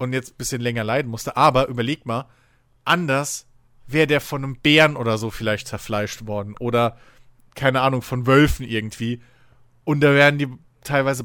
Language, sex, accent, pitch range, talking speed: German, male, German, 120-155 Hz, 170 wpm